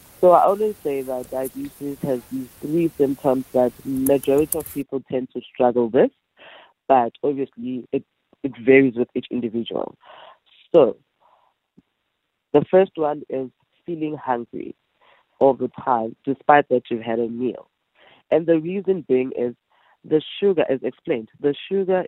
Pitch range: 120-150 Hz